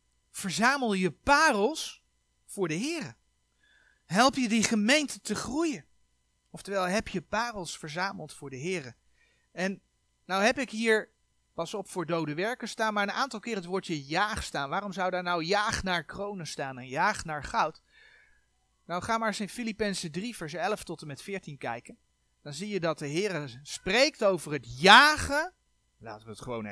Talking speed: 175 wpm